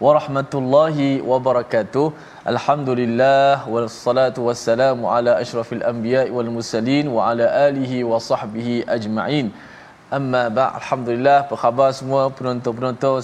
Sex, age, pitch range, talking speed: male, 20-39, 115-135 Hz, 115 wpm